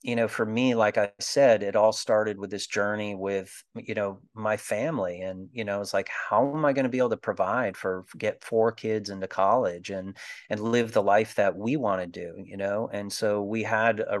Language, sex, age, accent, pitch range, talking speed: English, male, 30-49, American, 100-110 Hz, 230 wpm